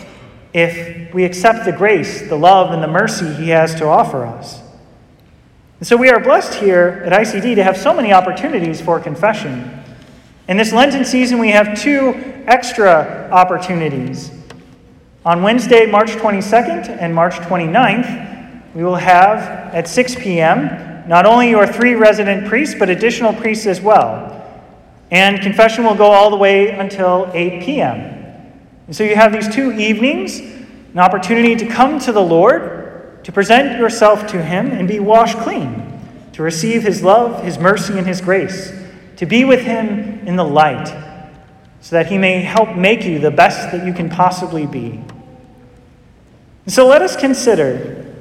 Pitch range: 170-230 Hz